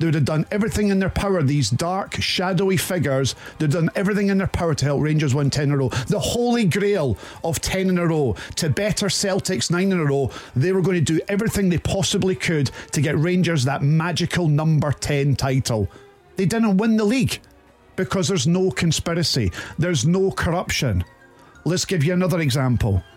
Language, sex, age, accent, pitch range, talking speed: English, male, 40-59, British, 140-190 Hz, 195 wpm